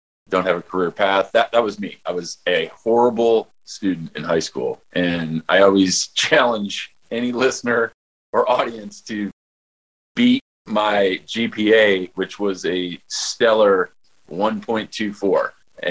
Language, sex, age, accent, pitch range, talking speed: English, male, 30-49, American, 95-120 Hz, 130 wpm